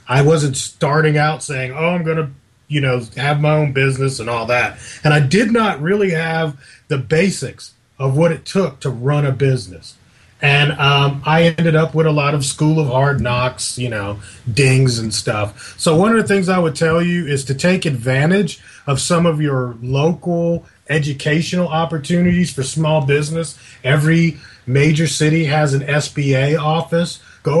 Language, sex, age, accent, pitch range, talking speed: English, male, 30-49, American, 125-160 Hz, 180 wpm